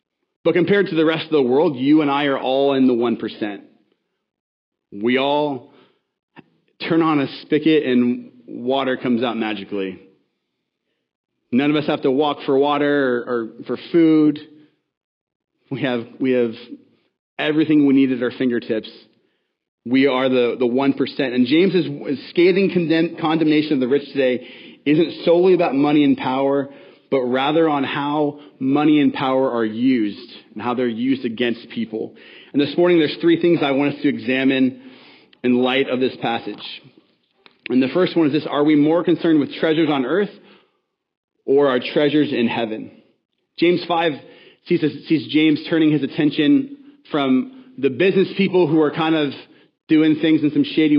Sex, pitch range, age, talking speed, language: male, 130-160 Hz, 30-49, 160 wpm, English